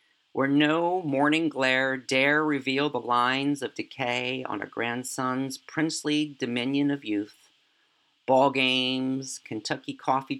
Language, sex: English, male